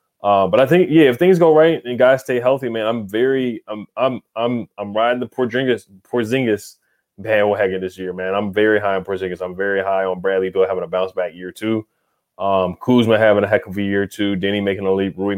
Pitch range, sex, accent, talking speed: 95-110 Hz, male, American, 240 wpm